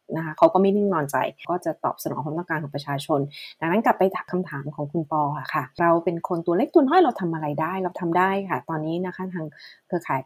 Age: 20-39